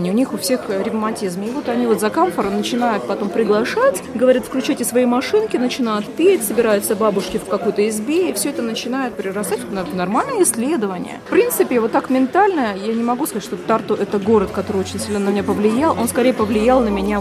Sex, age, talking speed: female, 30-49, 200 wpm